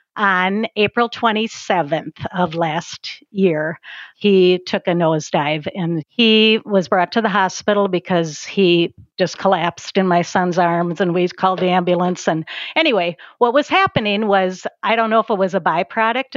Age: 50-69